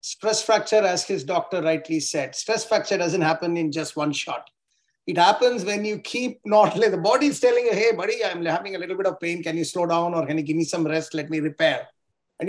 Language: English